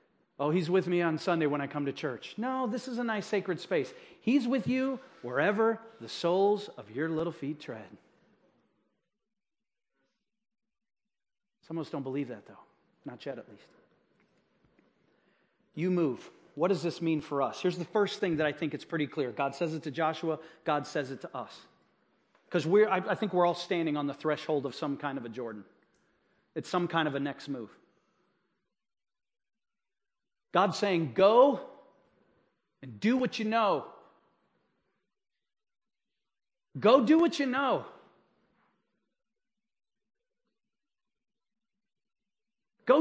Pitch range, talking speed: 155-225 Hz, 145 wpm